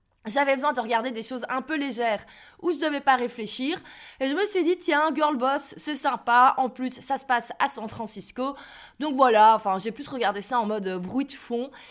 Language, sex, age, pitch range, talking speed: French, female, 20-39, 220-275 Hz, 225 wpm